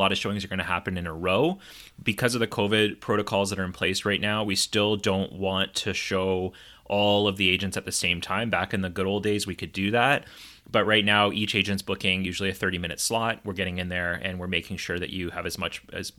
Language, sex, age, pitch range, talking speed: English, male, 30-49, 90-105 Hz, 260 wpm